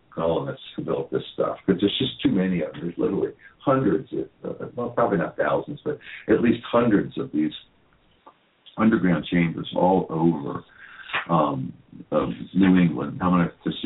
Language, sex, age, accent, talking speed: English, male, 60-79, American, 165 wpm